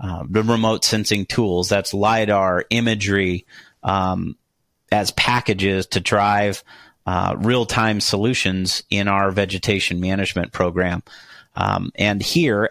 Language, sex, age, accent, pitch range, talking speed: English, male, 40-59, American, 100-115 Hz, 115 wpm